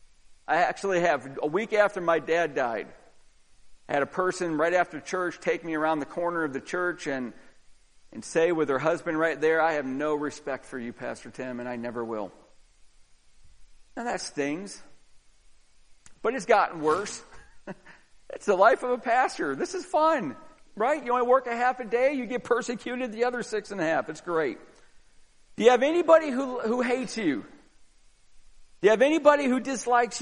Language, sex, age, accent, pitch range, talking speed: English, male, 50-69, American, 180-245 Hz, 185 wpm